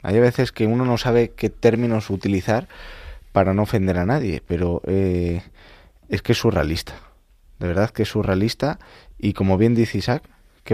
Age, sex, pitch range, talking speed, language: 20-39, male, 90-110 Hz, 175 wpm, Spanish